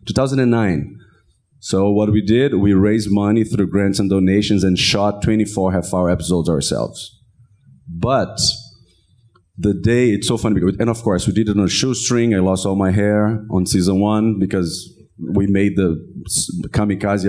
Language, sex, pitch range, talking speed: English, male, 95-115 Hz, 165 wpm